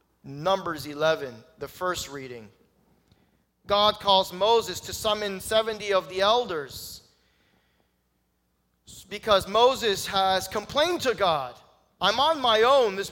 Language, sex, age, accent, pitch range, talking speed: English, male, 40-59, American, 180-250 Hz, 115 wpm